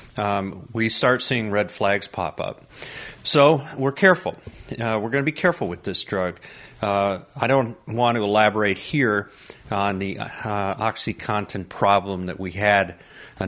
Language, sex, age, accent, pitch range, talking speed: English, male, 50-69, American, 95-125 Hz, 160 wpm